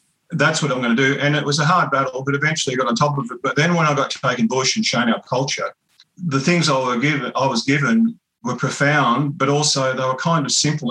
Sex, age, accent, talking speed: male, 40-59, Australian, 270 wpm